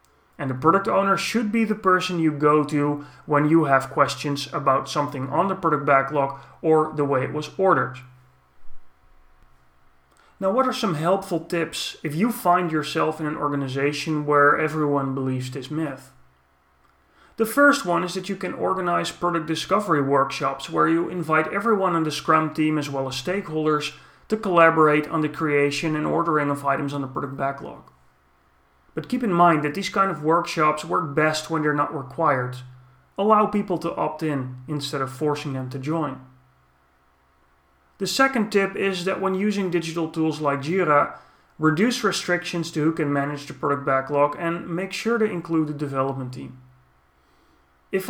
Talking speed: 170 wpm